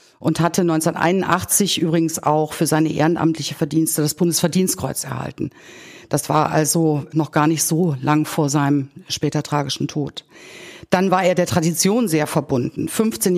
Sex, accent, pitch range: female, German, 145-170 Hz